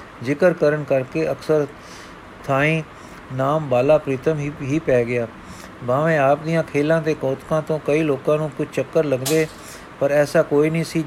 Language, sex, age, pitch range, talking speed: Punjabi, male, 50-69, 135-155 Hz, 165 wpm